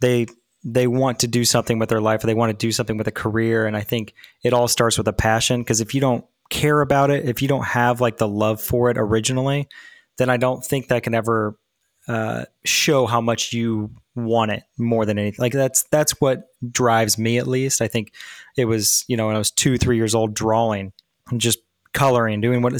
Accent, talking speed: American, 230 wpm